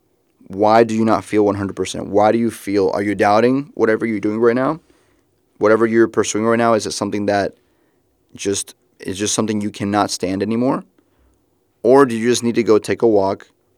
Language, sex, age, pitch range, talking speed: English, male, 20-39, 100-115 Hz, 195 wpm